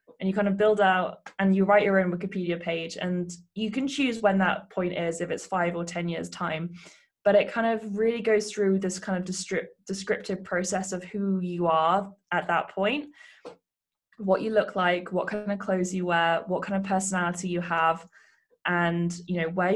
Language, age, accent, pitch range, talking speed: English, 20-39, British, 175-200 Hz, 205 wpm